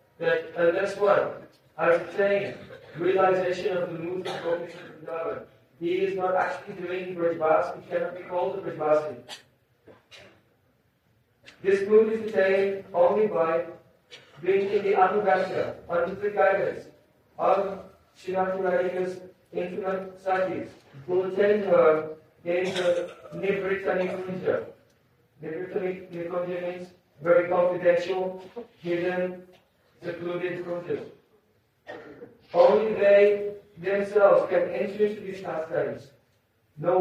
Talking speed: 110 wpm